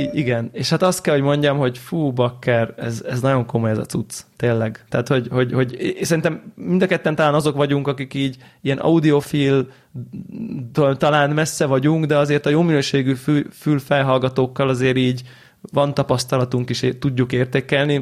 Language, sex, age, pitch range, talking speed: Hungarian, male, 20-39, 125-150 Hz, 175 wpm